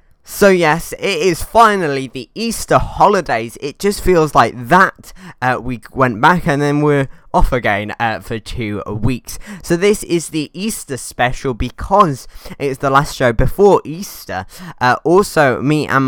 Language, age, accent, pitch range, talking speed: English, 10-29, British, 115-155 Hz, 160 wpm